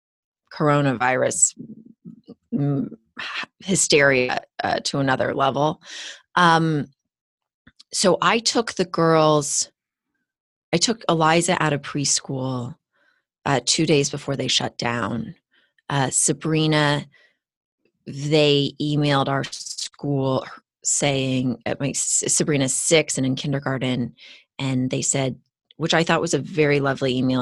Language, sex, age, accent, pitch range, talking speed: English, female, 30-49, American, 130-155 Hz, 110 wpm